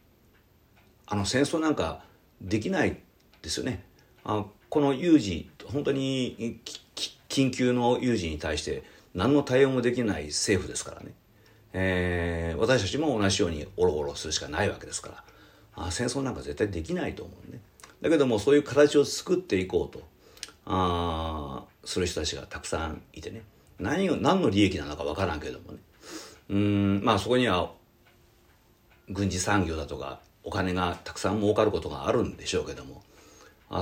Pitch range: 90-120 Hz